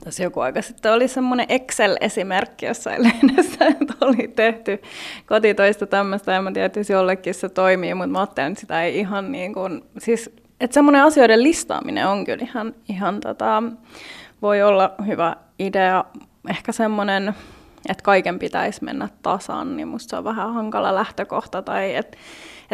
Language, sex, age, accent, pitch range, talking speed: Finnish, female, 20-39, native, 195-255 Hz, 155 wpm